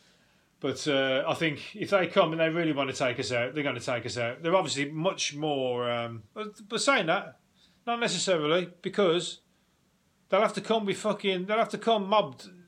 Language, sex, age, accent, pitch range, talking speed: English, male, 30-49, British, 140-190 Hz, 205 wpm